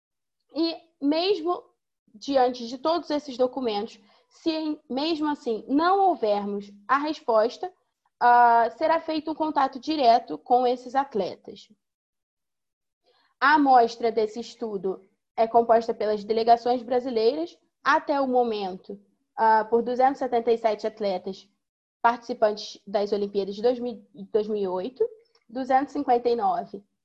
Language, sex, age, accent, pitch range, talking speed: English, female, 20-39, Brazilian, 225-290 Hz, 95 wpm